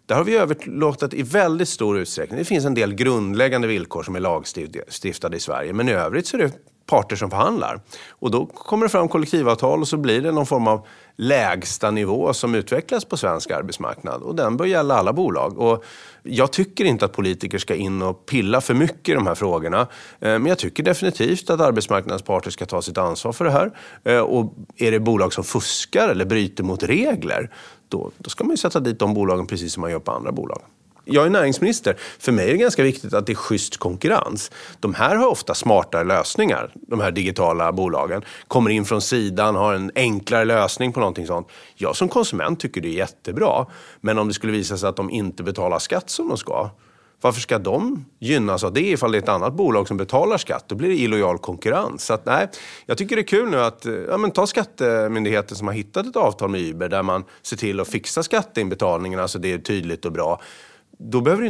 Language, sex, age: English, male, 30-49